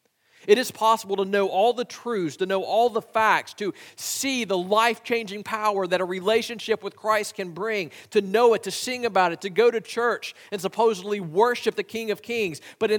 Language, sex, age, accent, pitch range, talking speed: English, male, 40-59, American, 195-230 Hz, 210 wpm